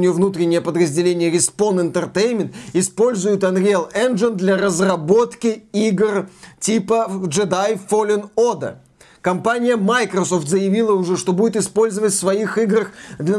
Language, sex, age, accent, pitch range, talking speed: Russian, male, 20-39, native, 170-215 Hz, 110 wpm